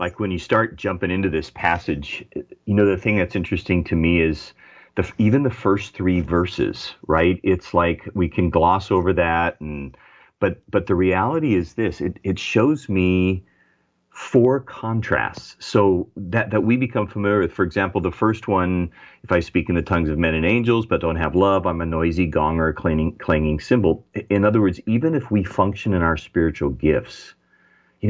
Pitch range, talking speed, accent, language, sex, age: 85-105 Hz, 190 wpm, American, English, male, 40-59